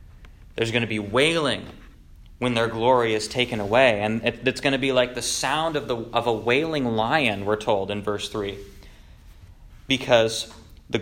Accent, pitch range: American, 105-135 Hz